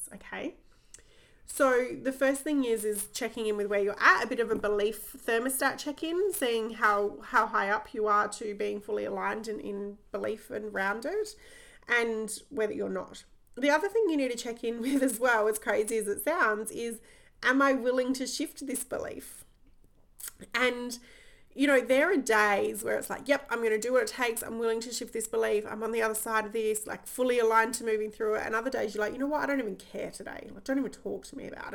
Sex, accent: female, Australian